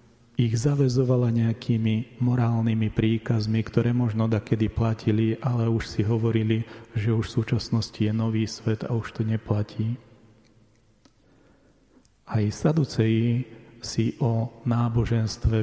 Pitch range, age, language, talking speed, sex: 110-125 Hz, 40-59, Slovak, 115 wpm, male